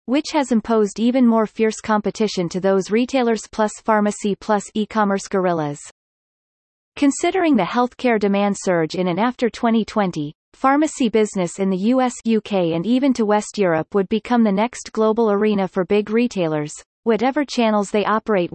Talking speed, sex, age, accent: 155 wpm, female, 30-49, American